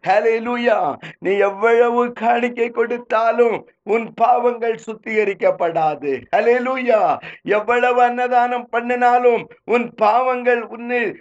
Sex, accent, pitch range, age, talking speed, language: male, native, 220-250 Hz, 50-69, 70 wpm, Tamil